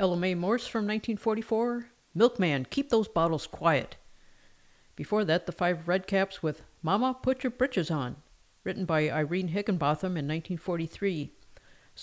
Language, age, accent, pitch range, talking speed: English, 50-69, American, 155-200 Hz, 140 wpm